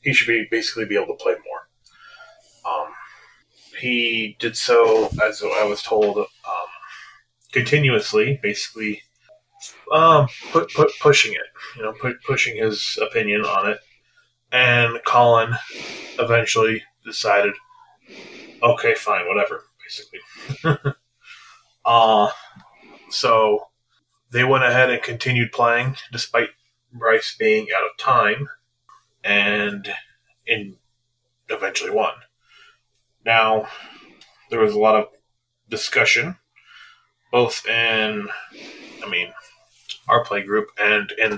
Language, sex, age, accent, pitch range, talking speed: English, male, 20-39, American, 110-165 Hz, 110 wpm